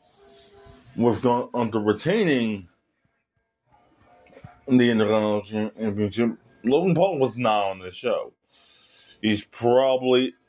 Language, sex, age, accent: English, male, 20-39, American